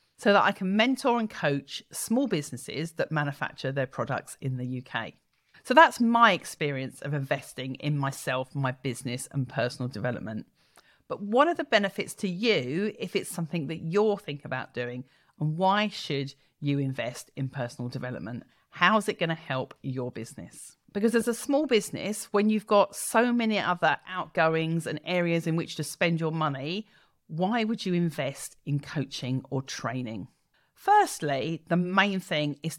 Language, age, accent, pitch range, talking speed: English, 40-59, British, 145-210 Hz, 170 wpm